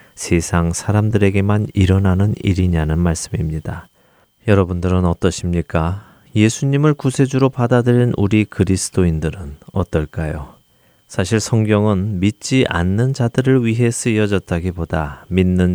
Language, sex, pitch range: Korean, male, 85-110 Hz